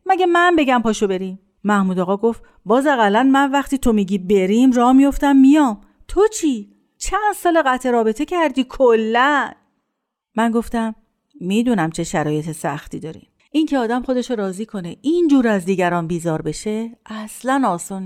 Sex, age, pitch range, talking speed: female, 50-69, 190-255 Hz, 150 wpm